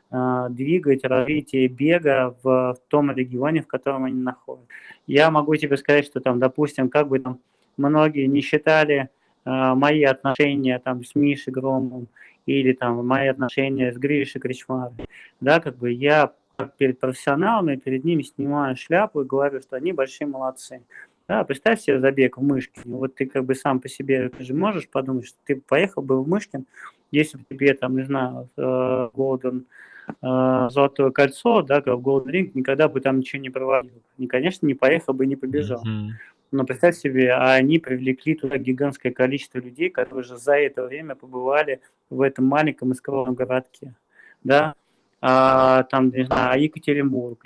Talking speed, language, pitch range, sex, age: 160 wpm, Russian, 130-140 Hz, male, 20-39